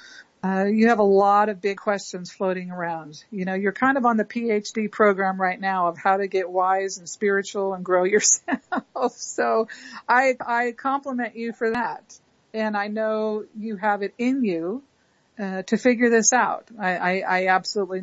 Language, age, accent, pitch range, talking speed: English, 50-69, American, 190-225 Hz, 185 wpm